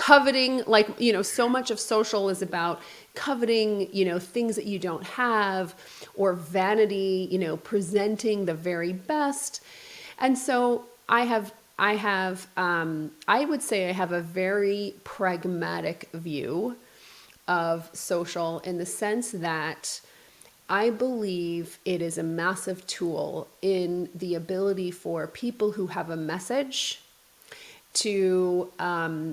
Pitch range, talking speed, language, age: 175-215 Hz, 135 wpm, English, 30-49